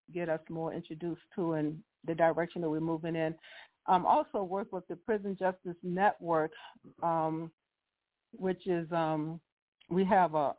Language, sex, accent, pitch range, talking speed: English, female, American, 165-190 Hz, 155 wpm